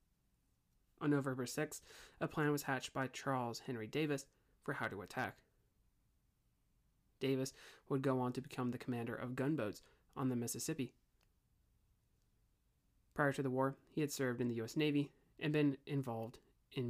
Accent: American